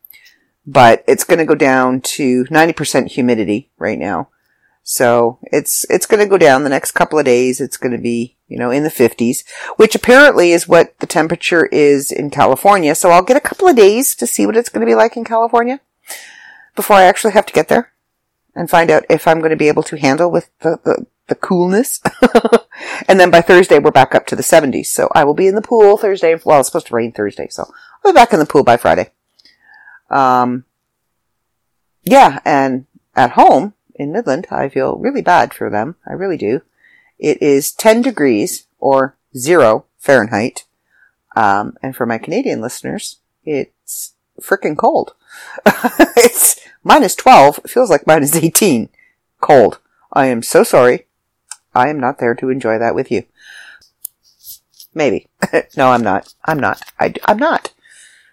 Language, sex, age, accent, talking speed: English, female, 50-69, American, 180 wpm